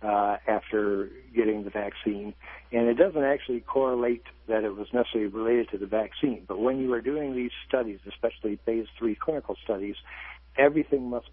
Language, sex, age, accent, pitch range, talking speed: English, male, 60-79, American, 105-120 Hz, 170 wpm